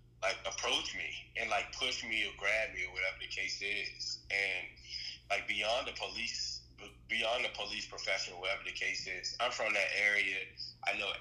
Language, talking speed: English, 180 wpm